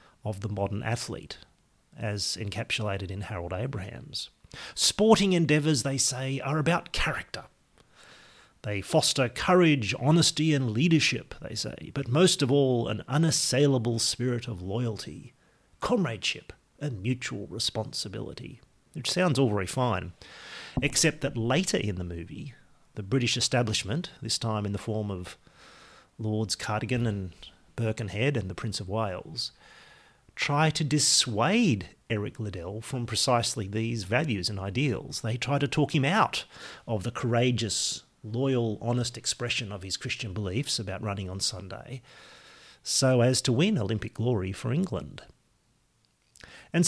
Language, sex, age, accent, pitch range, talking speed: English, male, 40-59, Australian, 110-140 Hz, 135 wpm